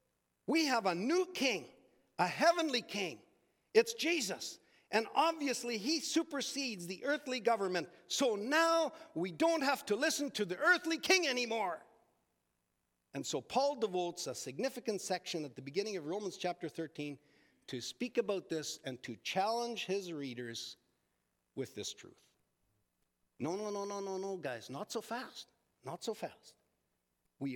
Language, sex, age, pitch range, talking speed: English, male, 50-69, 175-265 Hz, 150 wpm